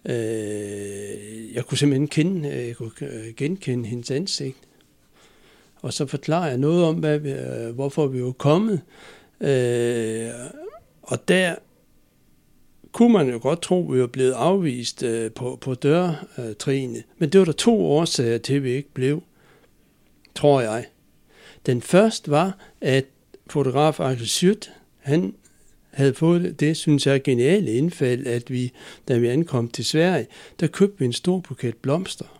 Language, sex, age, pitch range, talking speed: Danish, male, 60-79, 125-165 Hz, 145 wpm